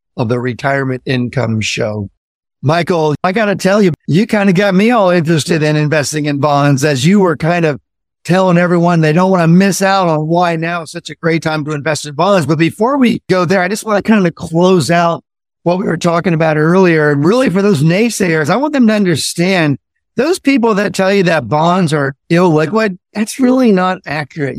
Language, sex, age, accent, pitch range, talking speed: English, male, 50-69, American, 155-195 Hz, 215 wpm